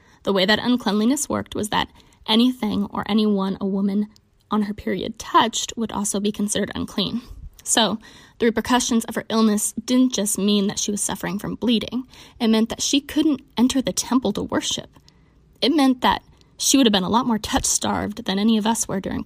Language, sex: English, female